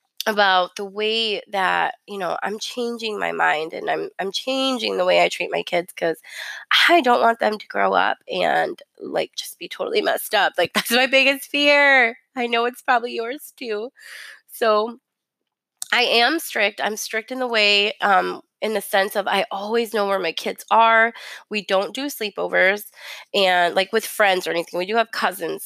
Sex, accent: female, American